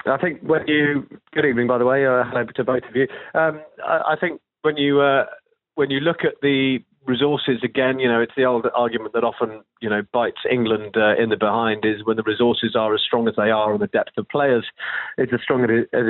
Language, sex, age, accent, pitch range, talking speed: English, male, 30-49, British, 115-125 Hz, 240 wpm